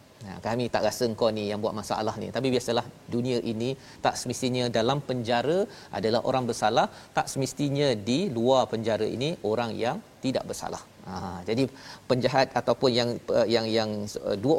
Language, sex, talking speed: Malayalam, male, 160 wpm